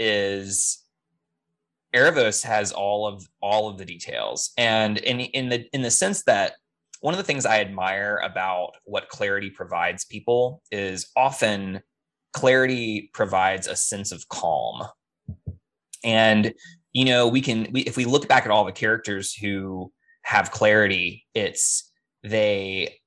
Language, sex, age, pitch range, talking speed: English, male, 20-39, 95-125 Hz, 145 wpm